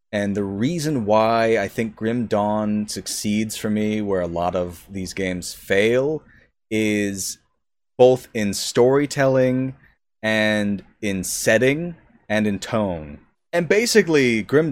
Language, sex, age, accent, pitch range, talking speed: English, male, 30-49, American, 95-120 Hz, 125 wpm